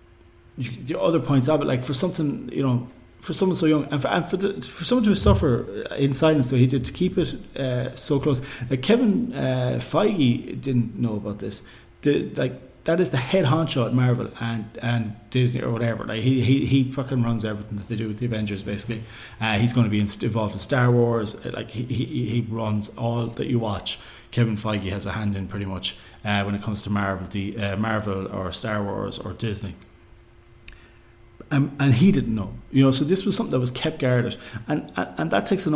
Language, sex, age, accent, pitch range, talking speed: English, male, 30-49, Irish, 110-135 Hz, 220 wpm